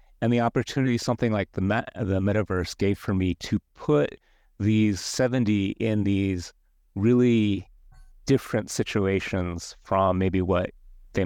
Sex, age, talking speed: male, 30-49, 130 wpm